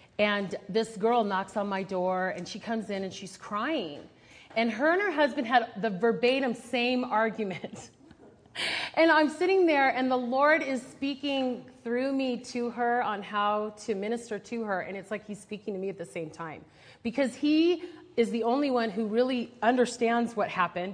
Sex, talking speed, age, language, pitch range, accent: female, 185 wpm, 30-49, English, 190-245 Hz, American